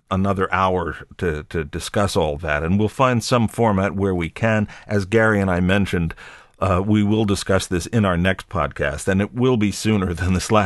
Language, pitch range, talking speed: English, 90-110 Hz, 205 wpm